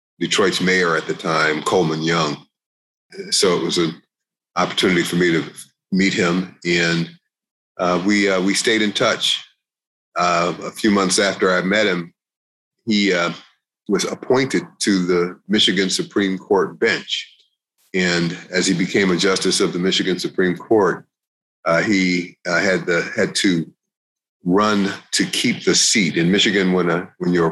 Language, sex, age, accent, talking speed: English, male, 30-49, American, 155 wpm